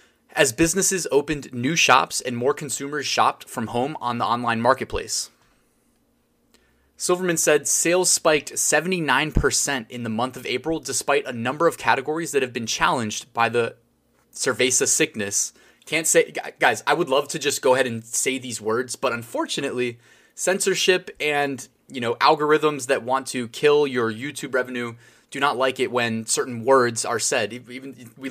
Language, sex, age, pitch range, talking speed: English, male, 20-39, 115-150 Hz, 160 wpm